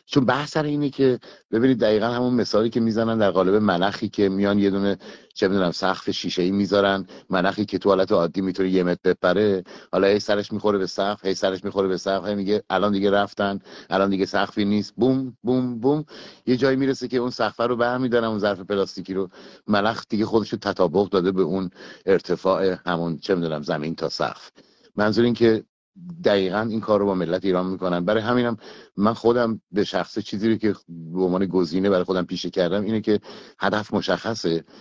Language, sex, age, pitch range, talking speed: Persian, male, 50-69, 95-110 Hz, 195 wpm